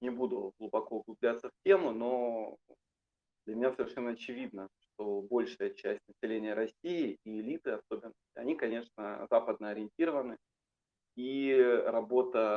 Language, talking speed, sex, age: Russian, 120 wpm, male, 20-39